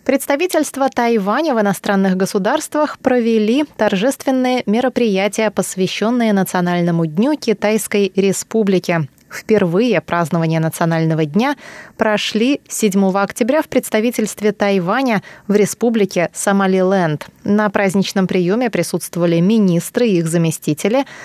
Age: 20-39